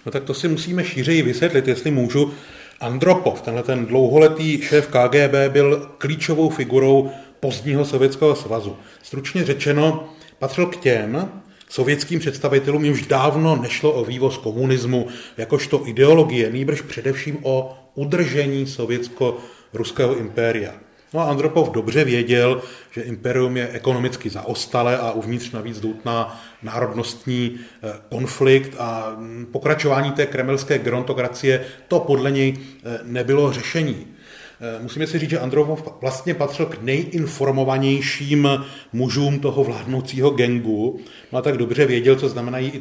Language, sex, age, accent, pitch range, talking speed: Czech, male, 30-49, native, 125-145 Hz, 130 wpm